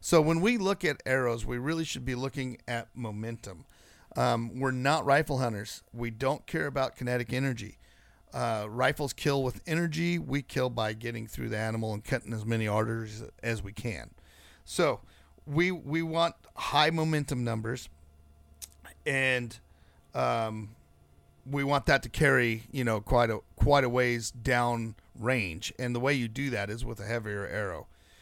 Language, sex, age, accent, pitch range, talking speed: English, male, 40-59, American, 105-140 Hz, 165 wpm